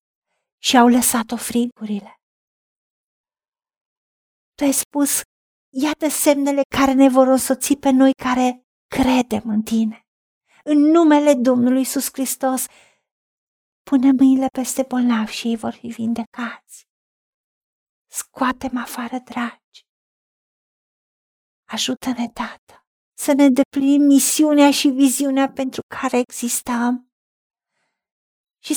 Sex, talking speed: female, 100 wpm